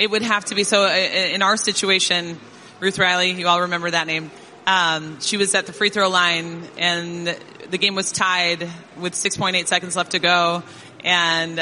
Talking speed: 185 wpm